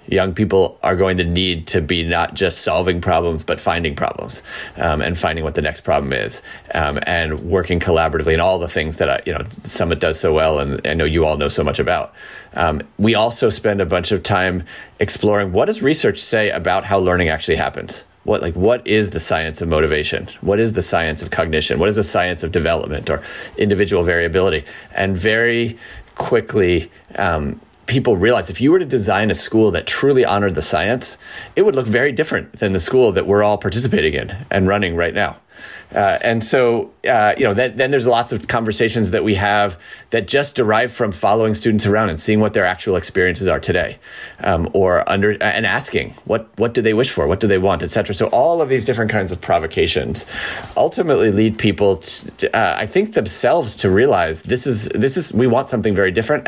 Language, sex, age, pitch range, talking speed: English, male, 30-49, 90-110 Hz, 210 wpm